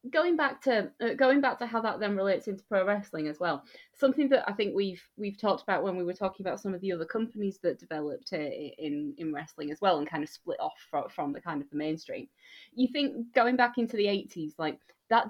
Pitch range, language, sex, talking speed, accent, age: 160-235 Hz, English, female, 240 wpm, British, 30-49